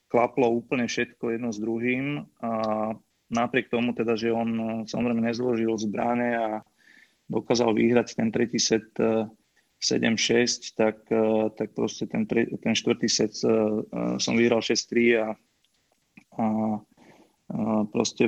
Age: 20-39